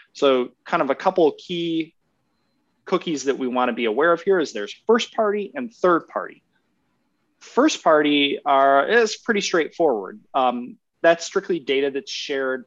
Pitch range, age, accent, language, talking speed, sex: 125-165 Hz, 30-49, American, English, 165 wpm, male